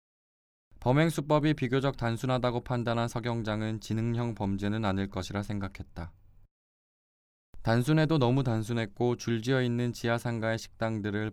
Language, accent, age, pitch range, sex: Korean, native, 20-39, 95-125 Hz, male